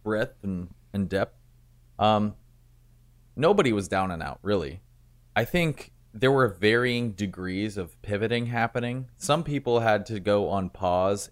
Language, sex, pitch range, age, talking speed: English, male, 85-120 Hz, 30-49, 145 wpm